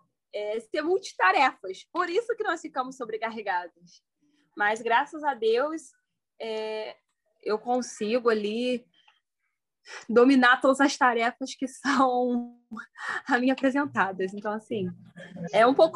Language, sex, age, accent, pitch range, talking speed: Portuguese, female, 10-29, Brazilian, 215-270 Hz, 115 wpm